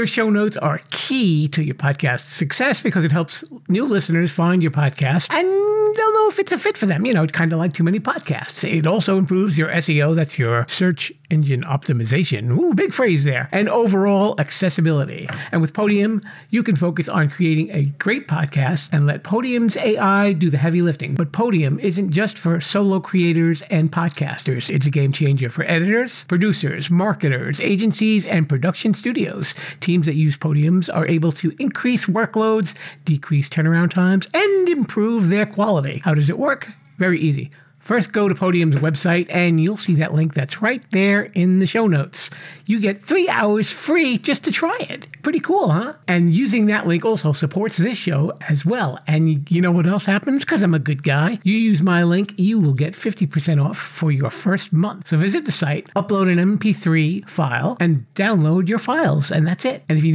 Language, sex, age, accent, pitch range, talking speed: English, male, 50-69, American, 155-205 Hz, 195 wpm